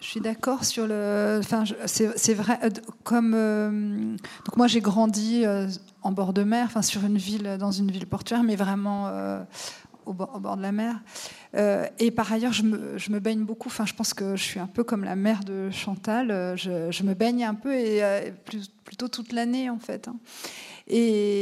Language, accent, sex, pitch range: French, French, female, 200-235 Hz